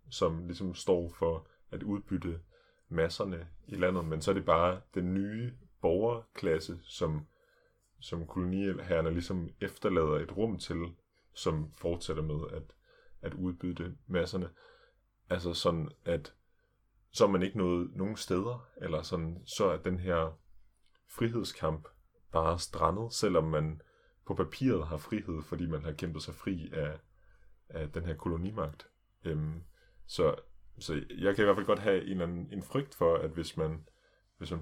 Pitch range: 80-95 Hz